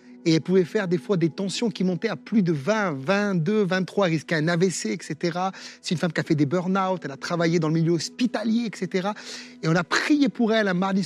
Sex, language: male, French